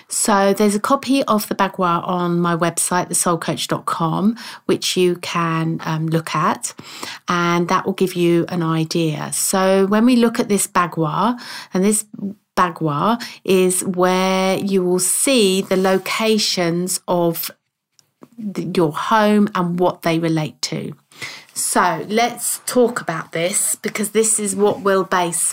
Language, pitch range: English, 175-210 Hz